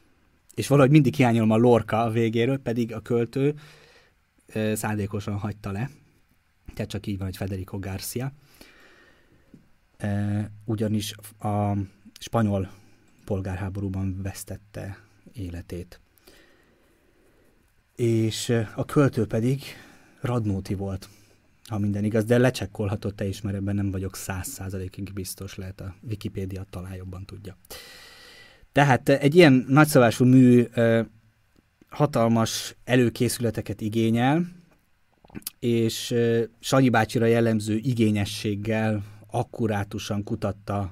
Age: 30-49